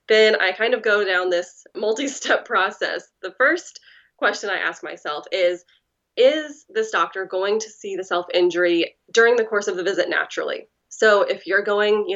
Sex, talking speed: female, 180 wpm